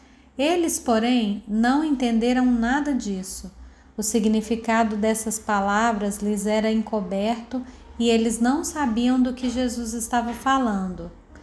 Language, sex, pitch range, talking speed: Portuguese, female, 220-265 Hz, 115 wpm